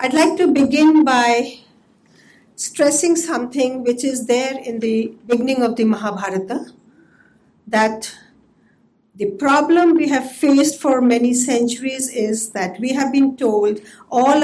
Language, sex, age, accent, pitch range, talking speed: English, female, 50-69, Indian, 225-270 Hz, 135 wpm